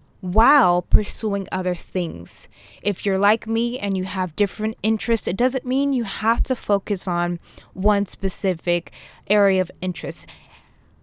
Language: English